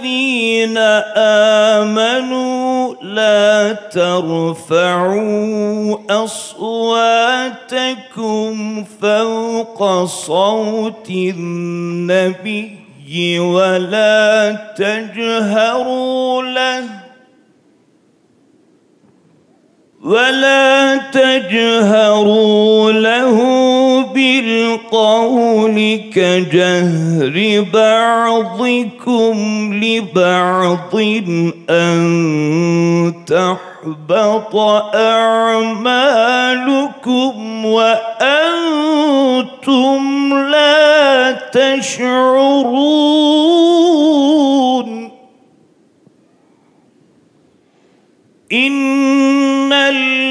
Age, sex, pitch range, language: 40-59, male, 210-260 Hz, Turkish